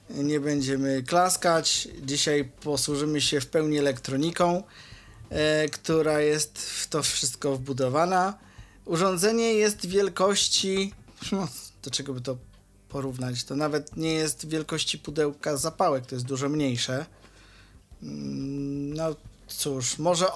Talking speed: 110 wpm